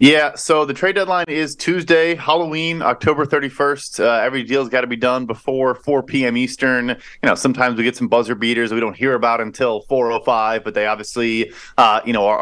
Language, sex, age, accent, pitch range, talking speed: English, male, 30-49, American, 125-165 Hz, 205 wpm